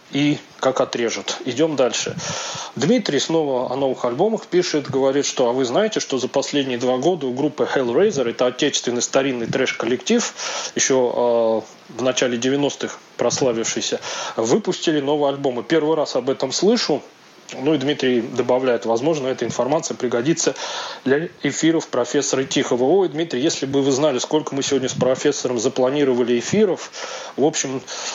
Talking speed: 145 wpm